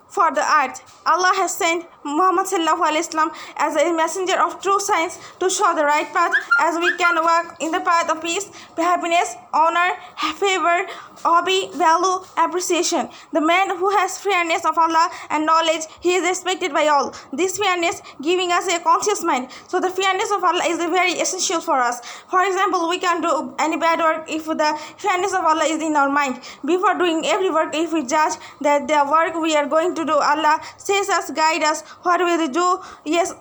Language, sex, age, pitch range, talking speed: Hindi, female, 20-39, 305-360 Hz, 195 wpm